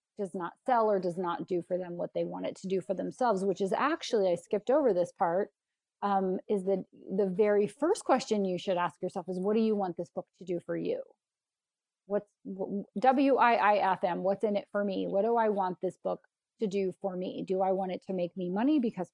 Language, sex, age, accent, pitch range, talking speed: English, female, 30-49, American, 185-215 Hz, 230 wpm